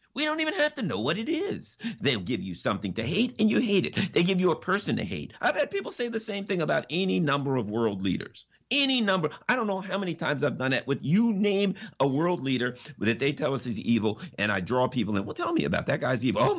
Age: 50-69